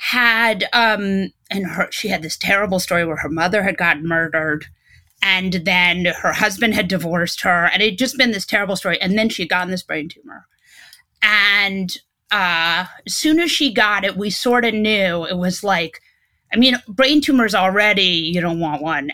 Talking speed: 195 wpm